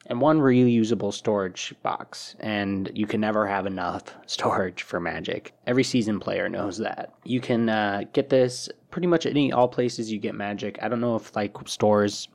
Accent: American